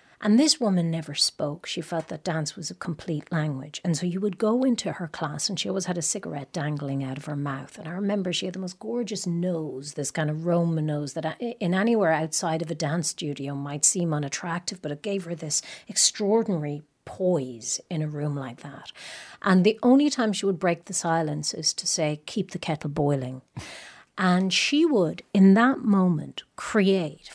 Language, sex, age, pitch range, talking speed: English, female, 40-59, 160-200 Hz, 200 wpm